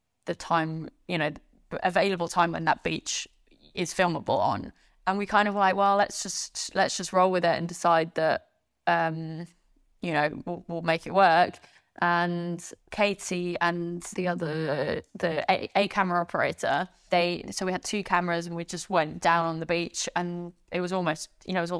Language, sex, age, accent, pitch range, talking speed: English, female, 20-39, British, 170-190 Hz, 185 wpm